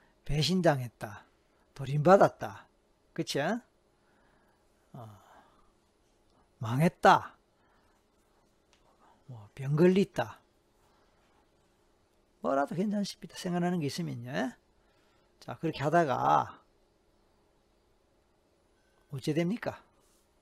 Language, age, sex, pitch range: Korean, 40-59, male, 125-165 Hz